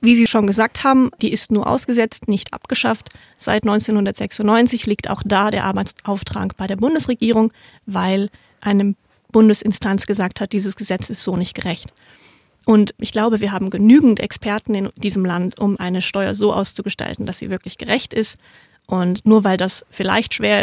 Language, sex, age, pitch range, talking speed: German, female, 30-49, 200-235 Hz, 170 wpm